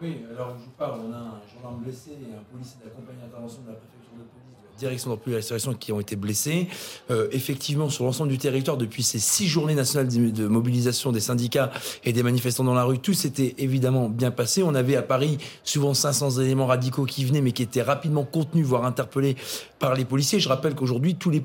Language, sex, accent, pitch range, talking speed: French, male, French, 130-175 Hz, 215 wpm